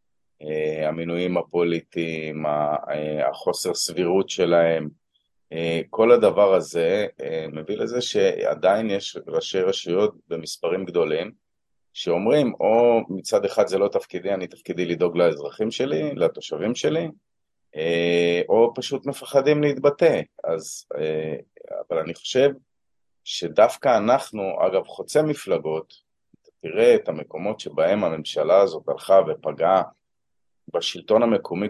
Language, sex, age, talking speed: Hebrew, male, 30-49, 100 wpm